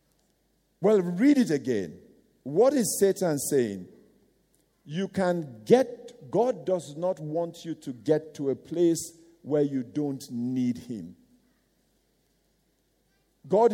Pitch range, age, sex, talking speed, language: 170-245 Hz, 50-69, male, 120 wpm, English